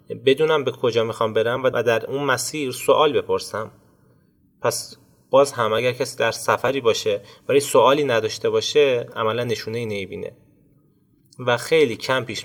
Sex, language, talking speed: male, Persian, 150 wpm